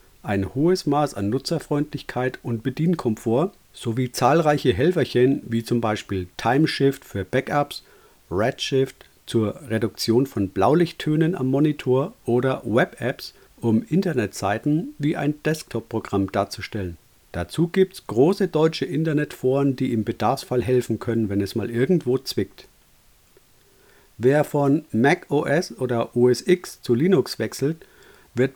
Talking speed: 120 wpm